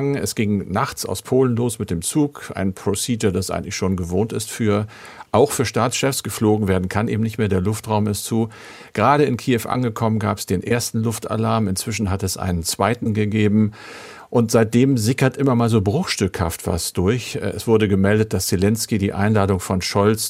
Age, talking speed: 50-69, 185 wpm